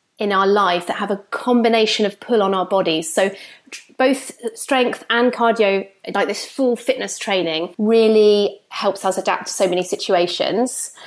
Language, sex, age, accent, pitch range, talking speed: English, female, 30-49, British, 190-230 Hz, 165 wpm